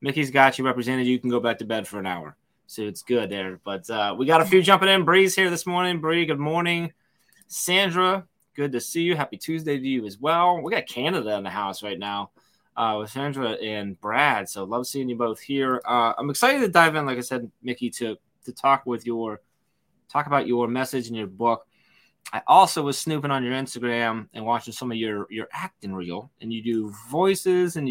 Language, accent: English, American